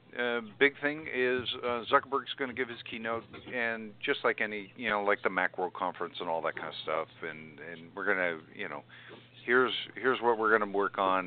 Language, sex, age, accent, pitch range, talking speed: English, male, 50-69, American, 95-125 Hz, 225 wpm